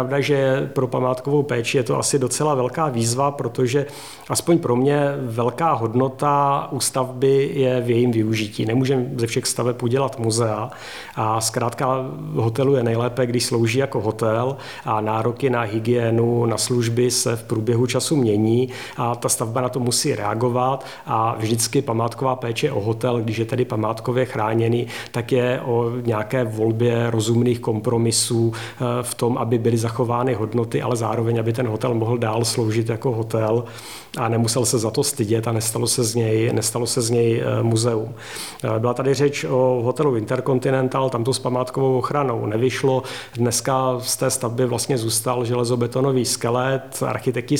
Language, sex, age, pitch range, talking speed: Czech, male, 40-59, 115-130 Hz, 160 wpm